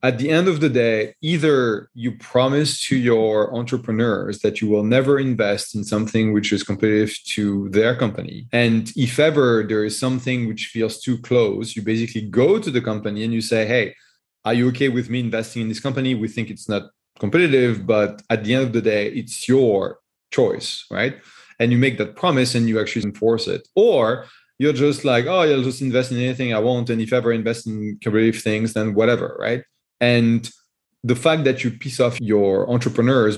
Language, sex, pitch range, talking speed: English, male, 110-130 Hz, 200 wpm